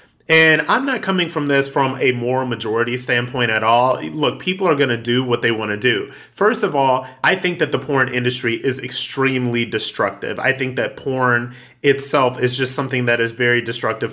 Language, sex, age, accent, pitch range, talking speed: English, male, 30-49, American, 120-145 Hz, 205 wpm